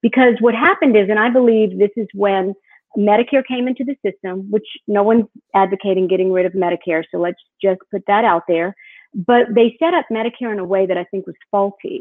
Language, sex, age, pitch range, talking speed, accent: English, female, 50-69, 185-225 Hz, 215 wpm, American